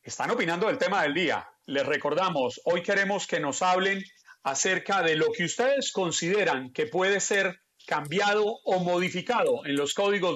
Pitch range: 155-195 Hz